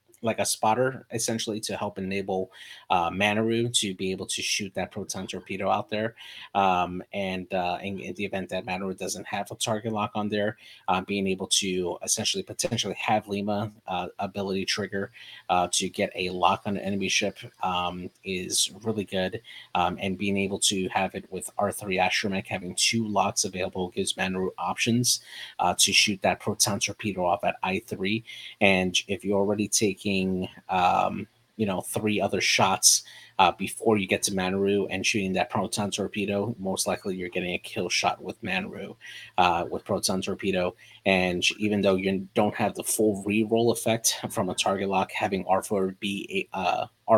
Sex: male